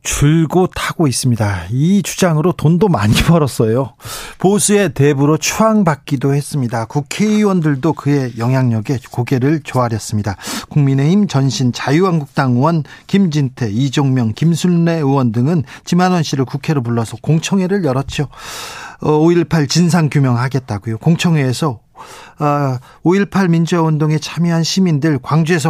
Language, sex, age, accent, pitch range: Korean, male, 40-59, native, 135-175 Hz